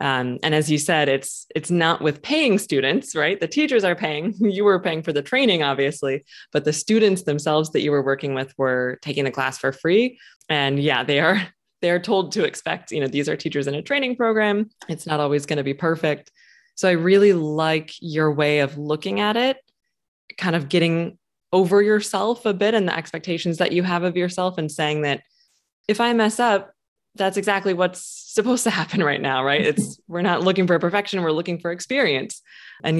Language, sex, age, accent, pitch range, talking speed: English, female, 20-39, American, 140-190 Hz, 205 wpm